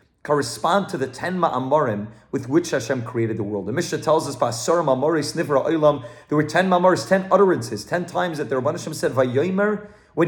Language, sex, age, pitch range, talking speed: English, male, 30-49, 140-180 Hz, 170 wpm